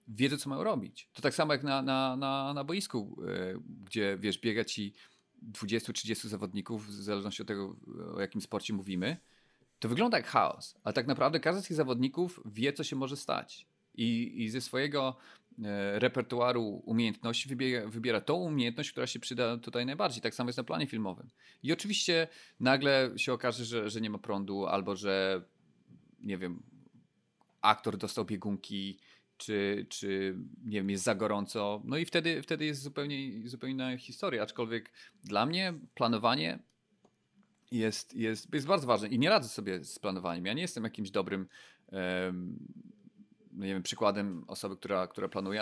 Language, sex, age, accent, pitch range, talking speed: Polish, male, 30-49, native, 100-135 Hz, 170 wpm